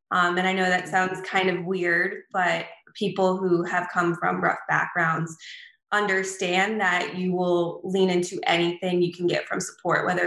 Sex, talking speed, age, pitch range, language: female, 175 wpm, 20-39, 175-205 Hz, English